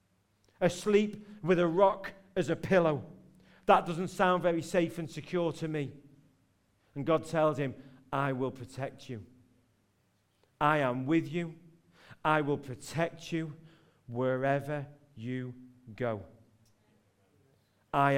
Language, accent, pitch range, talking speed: English, British, 135-175 Hz, 120 wpm